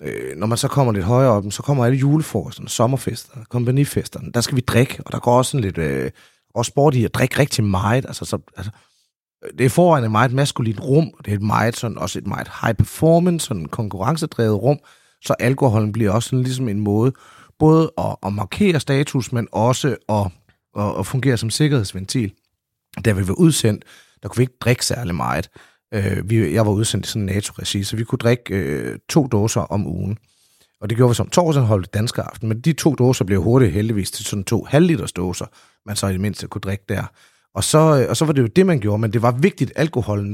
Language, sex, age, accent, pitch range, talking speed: Danish, male, 30-49, native, 105-140 Hz, 215 wpm